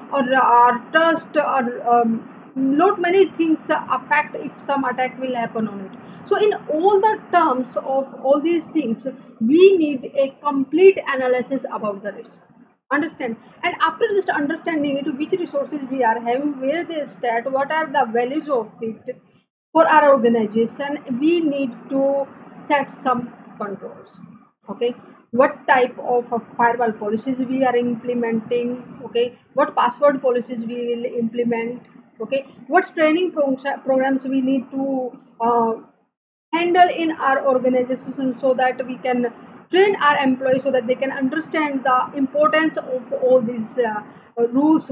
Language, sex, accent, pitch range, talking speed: English, female, Indian, 240-300 Hz, 145 wpm